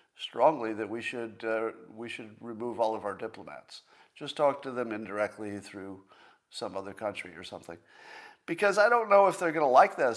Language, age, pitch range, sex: English, 50-69, 110-150 Hz, male